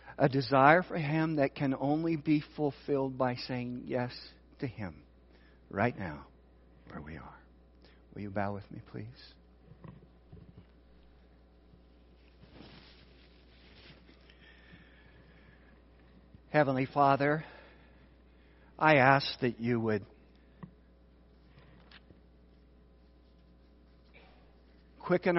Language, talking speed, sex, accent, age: English, 80 wpm, male, American, 60-79